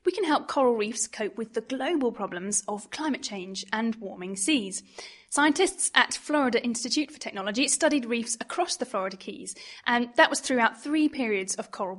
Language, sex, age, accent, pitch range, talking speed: English, female, 10-29, British, 220-285 Hz, 180 wpm